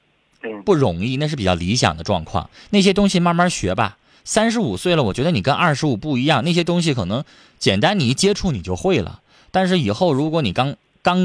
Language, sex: Chinese, male